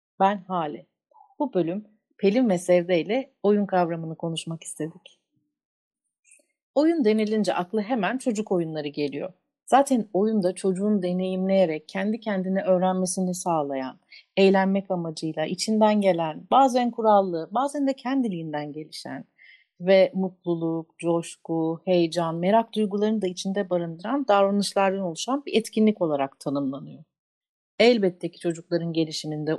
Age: 40-59